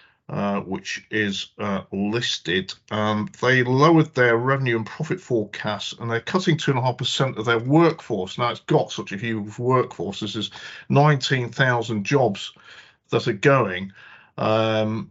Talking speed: 140 wpm